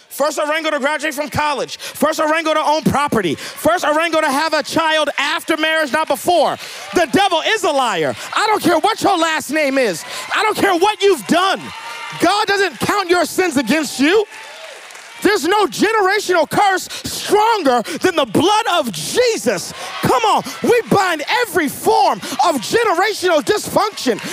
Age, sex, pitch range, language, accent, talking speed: 30-49, male, 285-385 Hz, English, American, 165 wpm